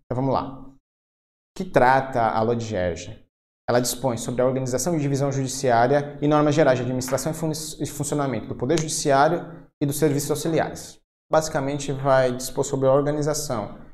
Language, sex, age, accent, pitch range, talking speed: Portuguese, male, 20-39, Brazilian, 120-145 Hz, 165 wpm